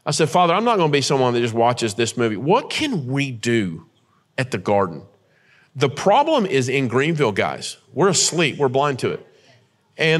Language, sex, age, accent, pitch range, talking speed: English, male, 40-59, American, 130-180 Hz, 200 wpm